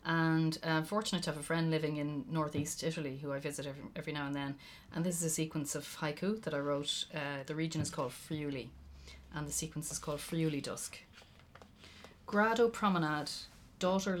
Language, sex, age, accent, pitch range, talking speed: English, female, 30-49, Irish, 130-175 Hz, 195 wpm